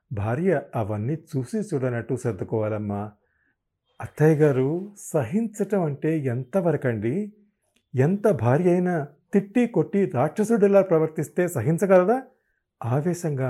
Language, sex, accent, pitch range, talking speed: Telugu, male, native, 115-160 Hz, 85 wpm